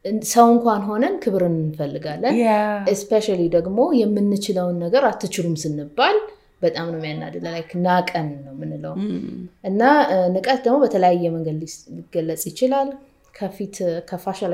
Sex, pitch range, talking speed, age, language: female, 170-210 Hz, 105 wpm, 20-39, Amharic